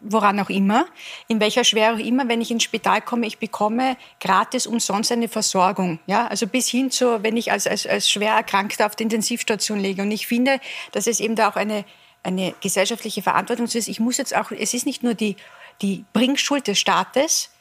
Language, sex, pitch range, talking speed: German, female, 210-240 Hz, 210 wpm